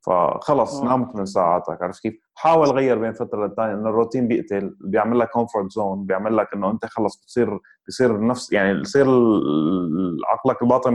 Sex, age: male, 20-39